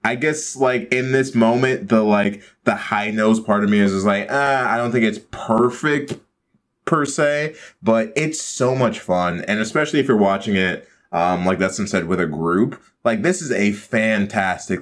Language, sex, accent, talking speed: English, male, American, 190 wpm